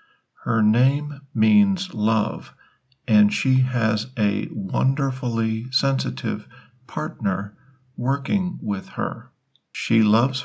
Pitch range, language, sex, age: 105-130 Hz, Thai, male, 50-69